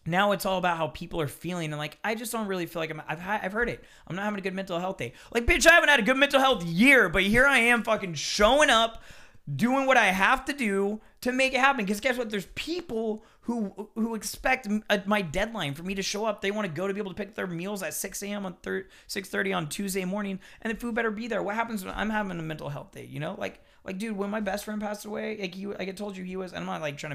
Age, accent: 30-49, American